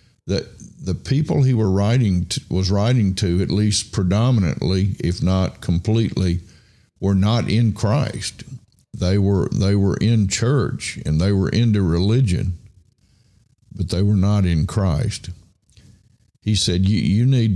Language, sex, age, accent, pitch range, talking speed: English, male, 50-69, American, 95-115 Hz, 140 wpm